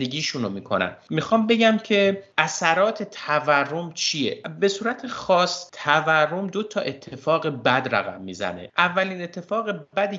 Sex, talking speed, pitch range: male, 125 wpm, 115-160 Hz